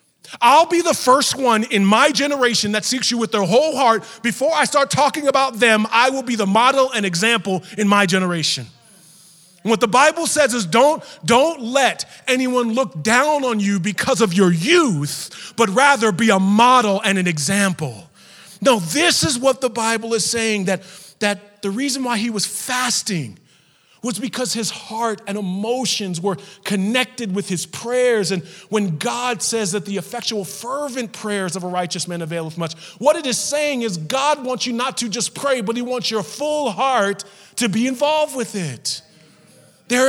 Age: 30-49